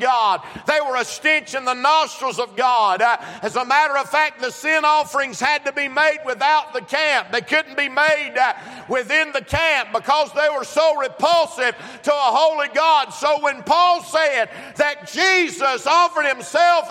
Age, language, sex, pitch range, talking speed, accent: 50-69, English, male, 255-315 Hz, 180 wpm, American